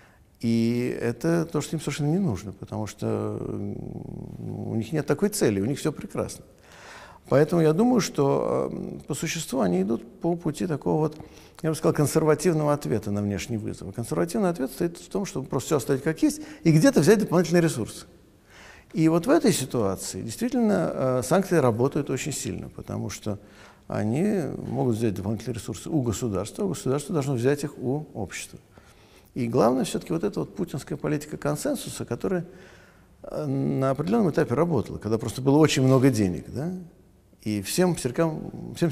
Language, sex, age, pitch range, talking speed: Russian, male, 50-69, 115-170 Hz, 160 wpm